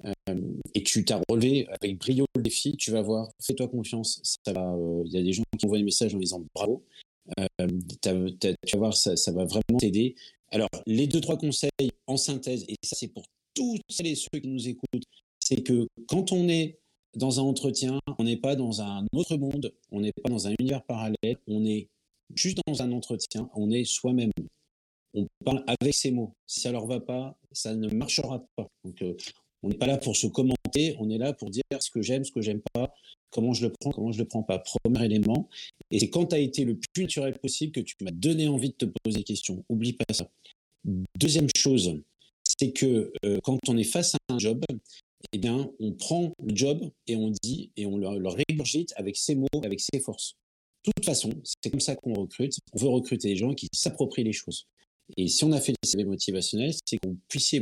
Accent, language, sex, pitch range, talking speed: French, French, male, 105-140 Hz, 225 wpm